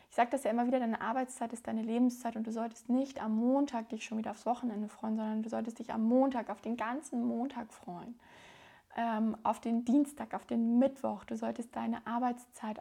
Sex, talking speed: female, 210 wpm